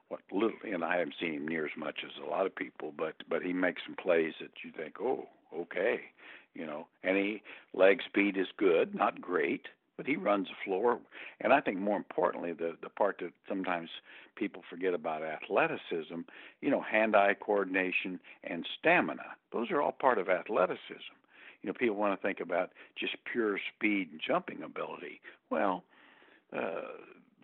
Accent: American